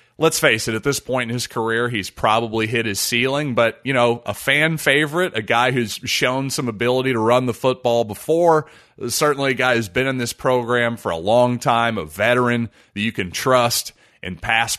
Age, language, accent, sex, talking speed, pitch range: 30-49, English, American, male, 205 wpm, 110-135 Hz